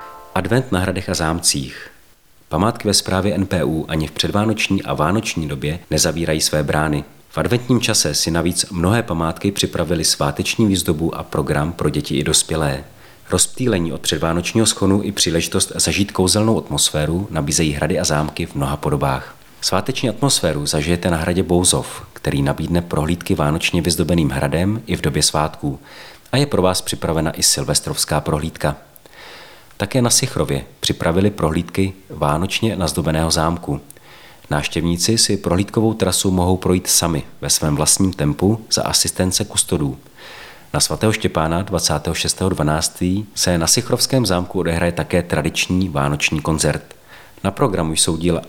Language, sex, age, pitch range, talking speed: Czech, male, 40-59, 80-95 Hz, 140 wpm